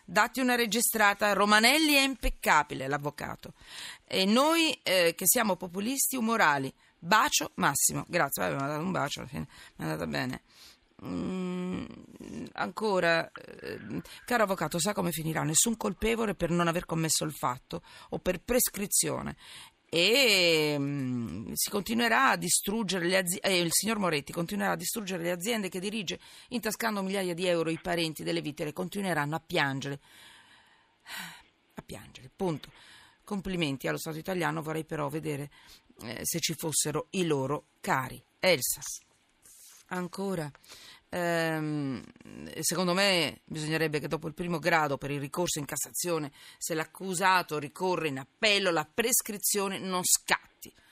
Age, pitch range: 40-59, 155-205 Hz